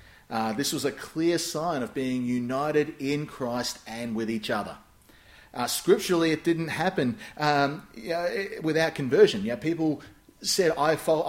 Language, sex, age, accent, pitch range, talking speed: English, male, 30-49, Australian, 120-160 Hz, 165 wpm